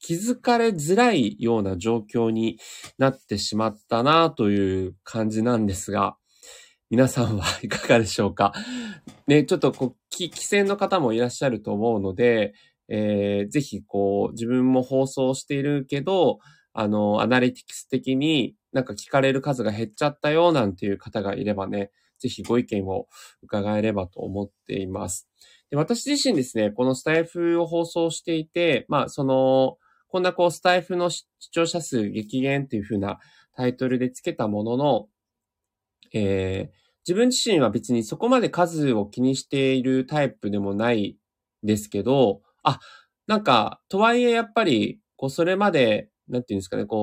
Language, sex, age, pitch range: Japanese, male, 20-39, 105-170 Hz